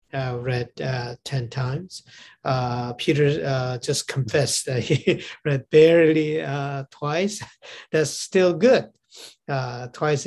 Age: 50-69